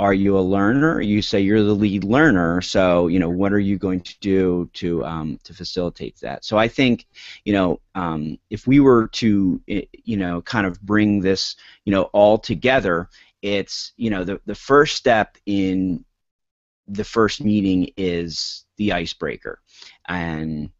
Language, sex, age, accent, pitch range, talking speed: English, male, 30-49, American, 90-110 Hz, 170 wpm